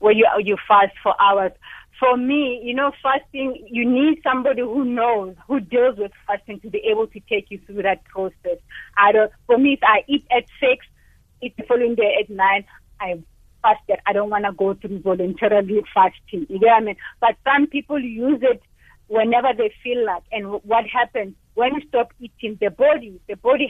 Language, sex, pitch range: English, female, 210-265 Hz